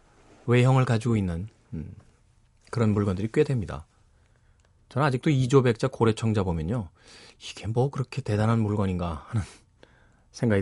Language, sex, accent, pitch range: Korean, male, native, 100-125 Hz